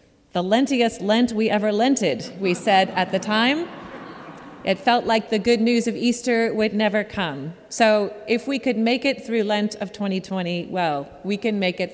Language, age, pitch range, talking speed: English, 30-49, 185-230 Hz, 185 wpm